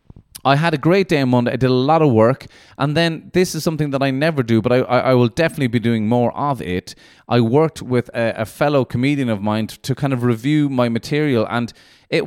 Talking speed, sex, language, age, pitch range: 245 wpm, male, English, 30-49, 120-155 Hz